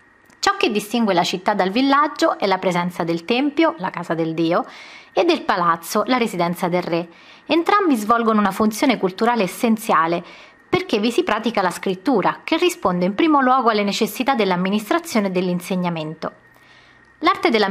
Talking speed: 160 wpm